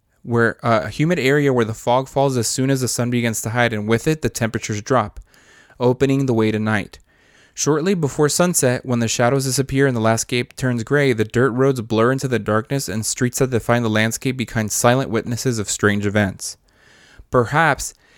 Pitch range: 115-135 Hz